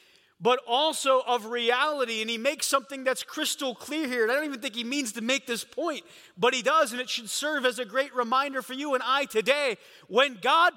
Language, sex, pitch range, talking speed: English, male, 185-270 Hz, 230 wpm